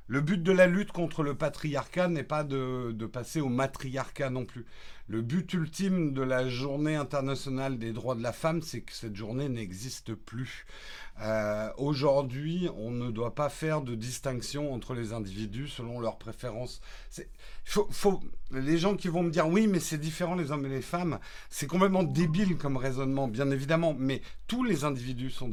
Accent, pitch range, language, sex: French, 125-160 Hz, French, male